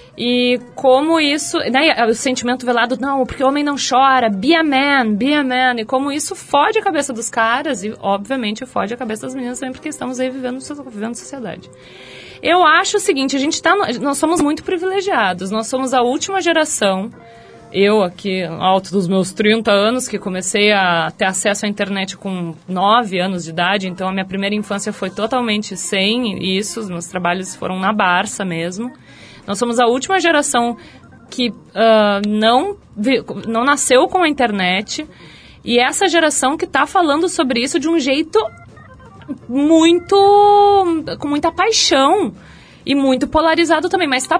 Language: Portuguese